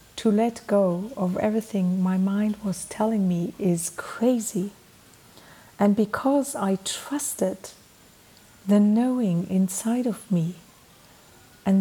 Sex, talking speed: female, 110 wpm